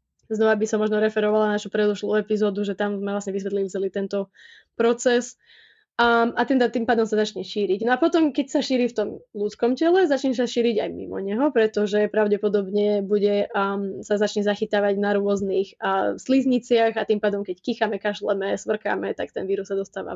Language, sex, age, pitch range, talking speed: Slovak, female, 20-39, 205-245 Hz, 190 wpm